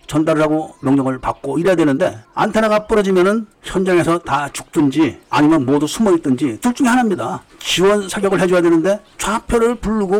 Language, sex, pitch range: Korean, male, 130-195 Hz